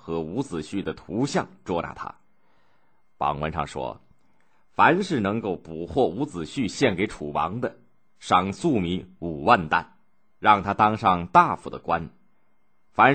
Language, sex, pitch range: Chinese, male, 90-135 Hz